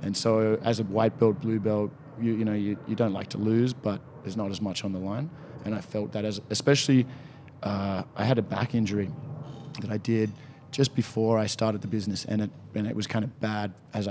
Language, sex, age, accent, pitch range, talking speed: English, male, 20-39, Australian, 100-120 Hz, 235 wpm